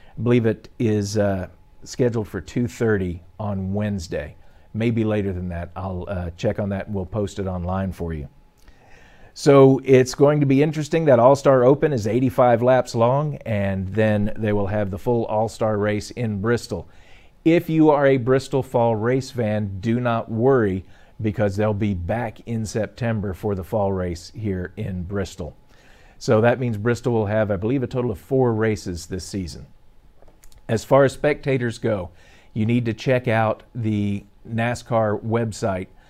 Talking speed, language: 170 wpm, English